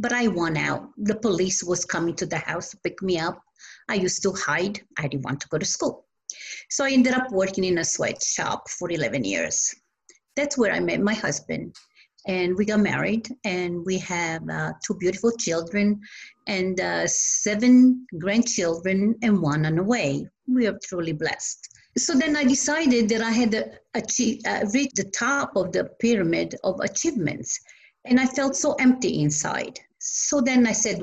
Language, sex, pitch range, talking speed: English, female, 180-245 Hz, 180 wpm